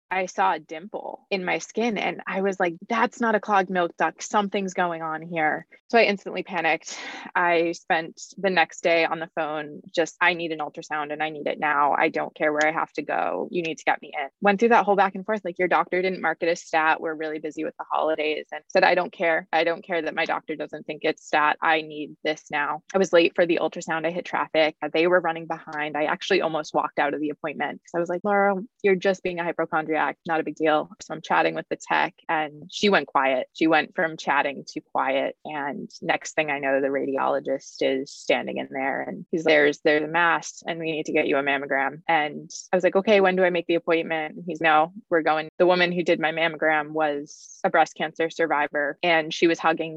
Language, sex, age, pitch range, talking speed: English, female, 20-39, 155-185 Hz, 245 wpm